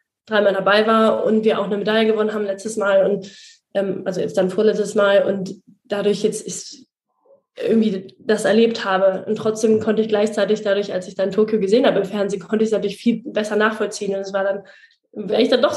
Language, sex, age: German, female, 20-39